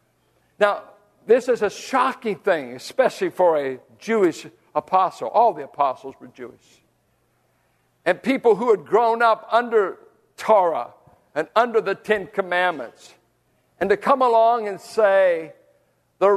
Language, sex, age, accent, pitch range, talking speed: English, male, 60-79, American, 170-240 Hz, 130 wpm